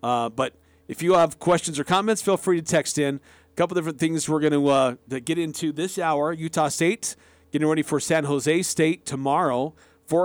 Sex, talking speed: male, 205 wpm